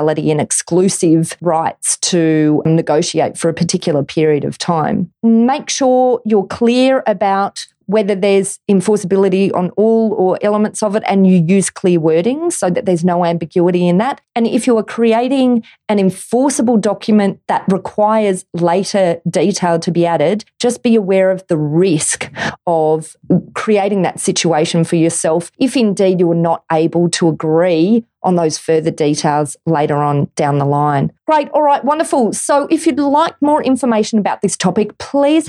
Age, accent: 30-49, Australian